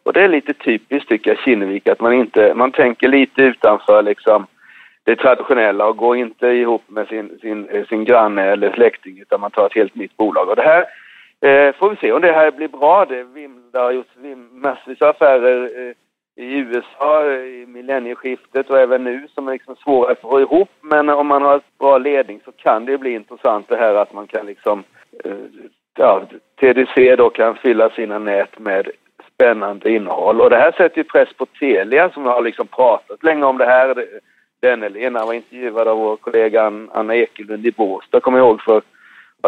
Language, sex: Swedish, male